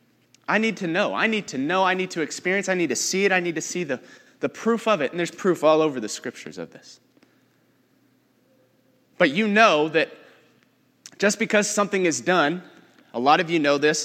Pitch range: 155-190 Hz